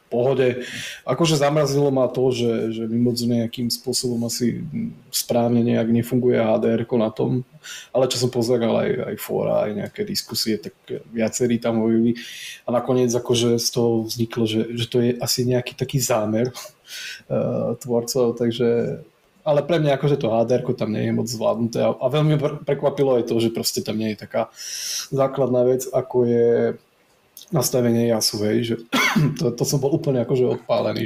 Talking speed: 165 wpm